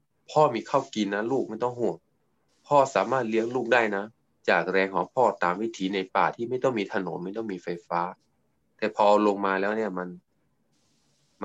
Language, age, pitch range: Thai, 20-39, 95-130 Hz